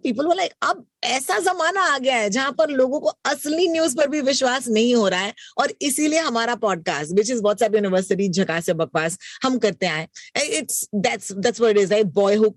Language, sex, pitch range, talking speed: Hindi, female, 180-235 Hz, 125 wpm